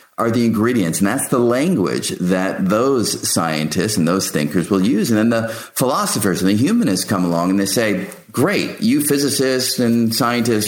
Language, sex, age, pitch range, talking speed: English, male, 50-69, 95-135 Hz, 180 wpm